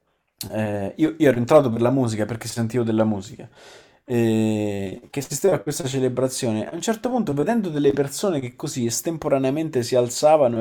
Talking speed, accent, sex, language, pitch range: 165 wpm, native, male, Italian, 115-140 Hz